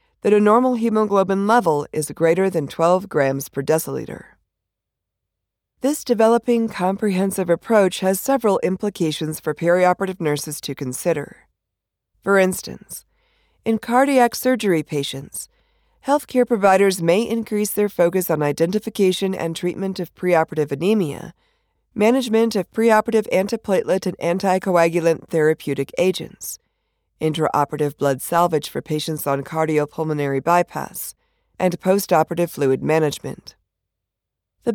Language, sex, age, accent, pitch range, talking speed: English, female, 40-59, American, 150-215 Hz, 110 wpm